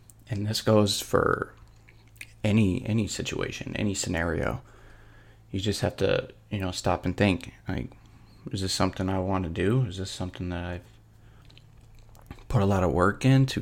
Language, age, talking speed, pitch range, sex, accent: English, 20-39, 165 wpm, 100-115 Hz, male, American